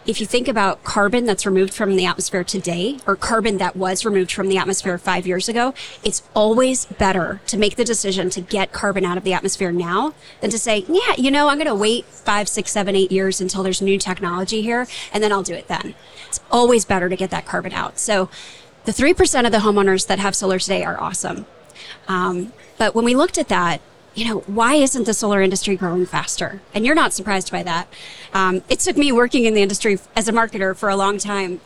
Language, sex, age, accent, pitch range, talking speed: English, female, 30-49, American, 190-225 Hz, 225 wpm